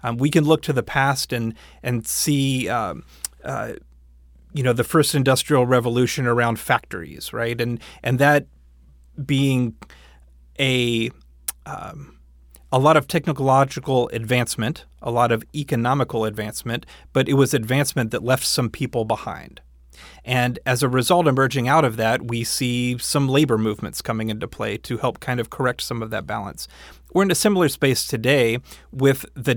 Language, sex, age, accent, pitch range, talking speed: English, male, 30-49, American, 110-140 Hz, 160 wpm